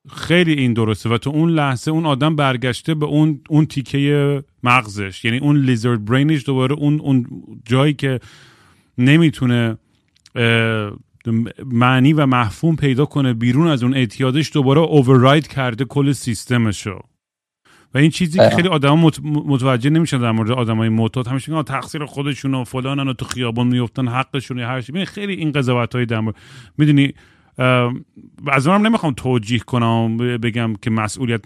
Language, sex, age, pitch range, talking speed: Persian, male, 40-59, 115-150 Hz, 145 wpm